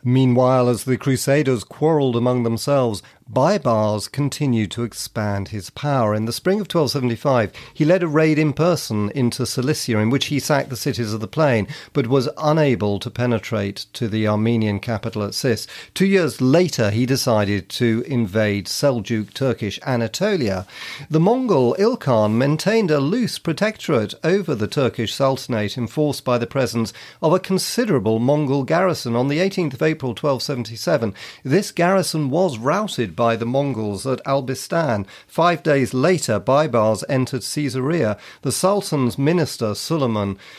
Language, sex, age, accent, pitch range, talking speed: English, male, 40-59, British, 115-150 Hz, 150 wpm